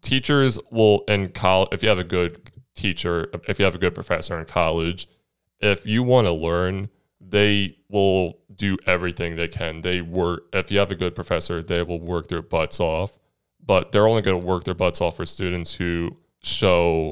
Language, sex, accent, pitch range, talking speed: English, male, American, 85-95 Hz, 195 wpm